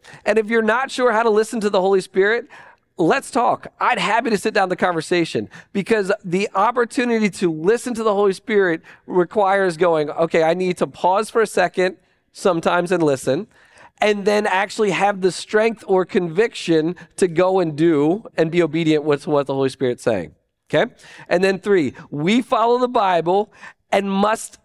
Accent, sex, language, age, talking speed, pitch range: American, male, English, 40-59, 180 wpm, 175-220 Hz